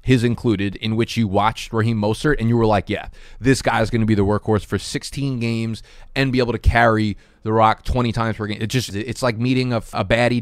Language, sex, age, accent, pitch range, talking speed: English, male, 20-39, American, 105-125 Hz, 240 wpm